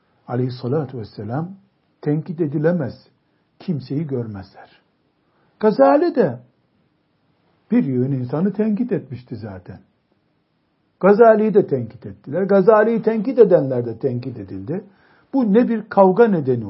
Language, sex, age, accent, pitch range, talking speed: Turkish, male, 60-79, native, 130-205 Hz, 105 wpm